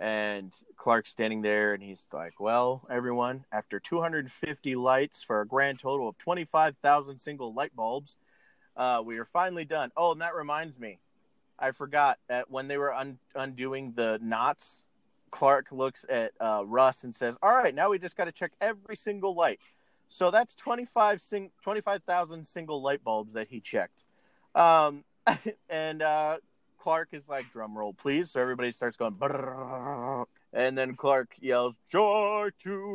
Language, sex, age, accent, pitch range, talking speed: English, male, 30-49, American, 120-160 Hz, 165 wpm